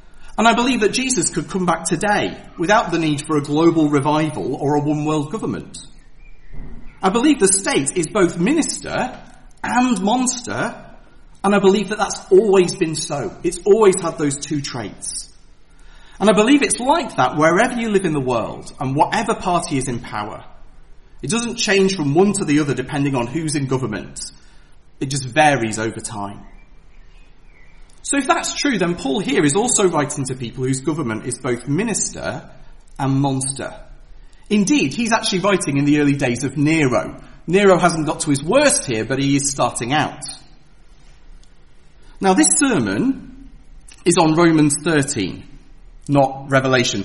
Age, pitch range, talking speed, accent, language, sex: 40-59, 135-195 Hz, 165 wpm, British, English, male